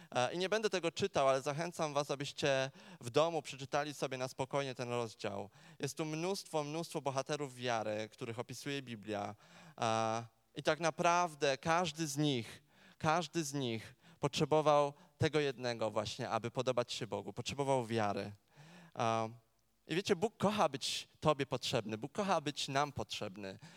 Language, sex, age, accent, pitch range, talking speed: Polish, male, 20-39, native, 125-165 Hz, 145 wpm